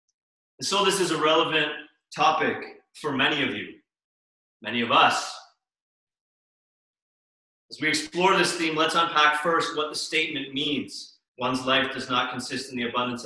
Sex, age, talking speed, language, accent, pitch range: male, 30-49, 155 wpm, English, American, 135-175 Hz